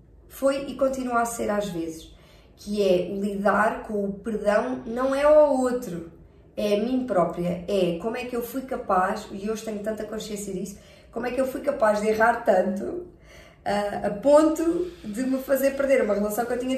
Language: Portuguese